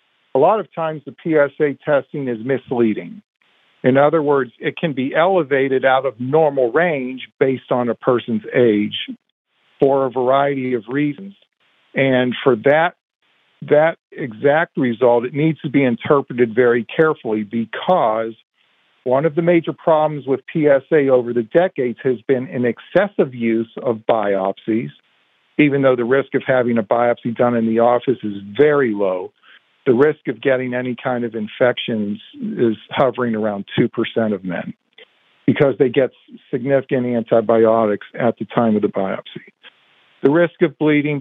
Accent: American